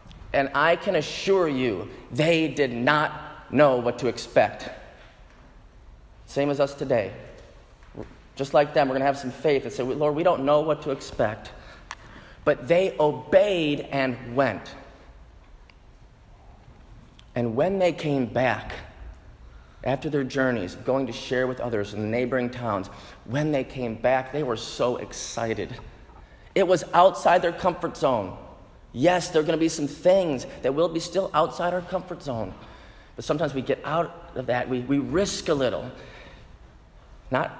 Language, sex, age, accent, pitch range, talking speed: English, male, 30-49, American, 125-170 Hz, 160 wpm